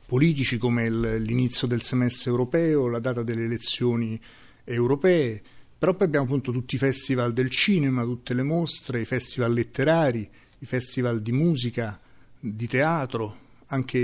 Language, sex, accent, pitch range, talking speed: Italian, male, native, 120-150 Hz, 140 wpm